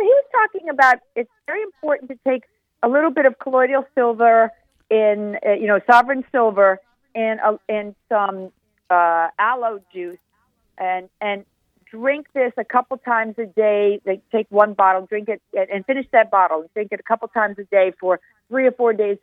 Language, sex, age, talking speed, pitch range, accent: English, female, 50-69, 185 wpm, 200-260 Hz, American